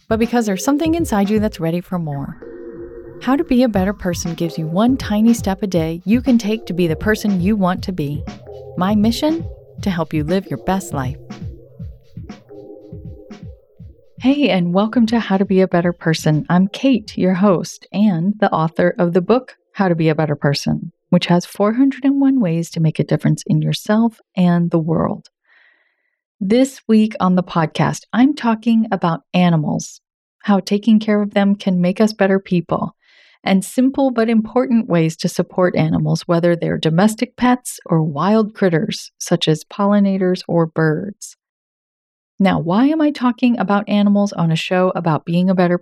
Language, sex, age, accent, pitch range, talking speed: English, female, 40-59, American, 175-230 Hz, 175 wpm